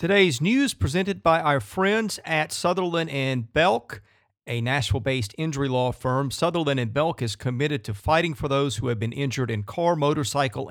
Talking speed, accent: 175 wpm, American